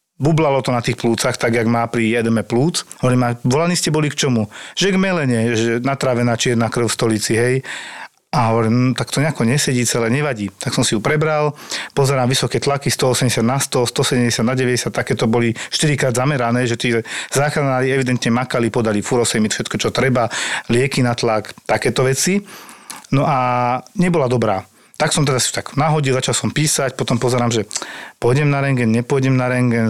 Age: 40-59